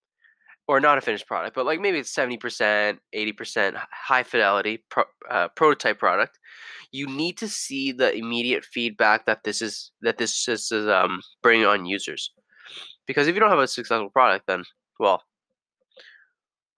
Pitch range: 120-180 Hz